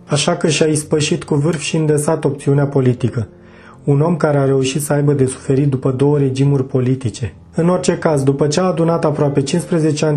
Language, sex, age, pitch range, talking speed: Romanian, male, 30-49, 135-155 Hz, 195 wpm